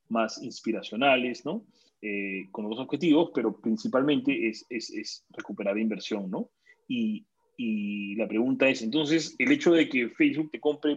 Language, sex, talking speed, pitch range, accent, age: Spanish, male, 155 wpm, 110-160 Hz, Argentinian, 30-49